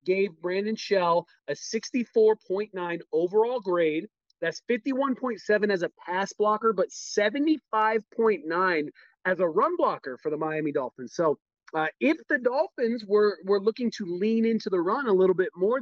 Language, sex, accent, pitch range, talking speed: English, male, American, 175-225 Hz, 150 wpm